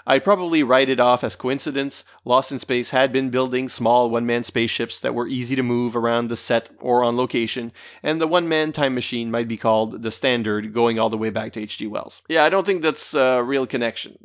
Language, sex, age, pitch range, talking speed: English, male, 30-49, 120-155 Hz, 225 wpm